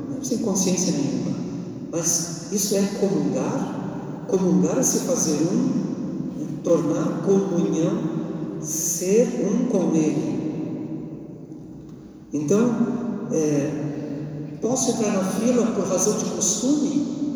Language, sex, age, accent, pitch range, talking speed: Portuguese, male, 50-69, Brazilian, 165-240 Hz, 100 wpm